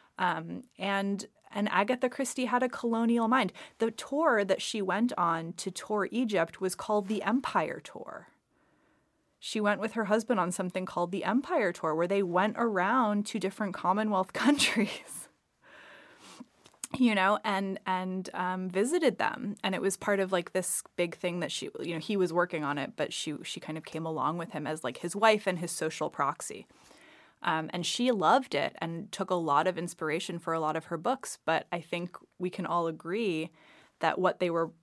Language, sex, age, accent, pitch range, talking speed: English, female, 20-39, American, 165-210 Hz, 195 wpm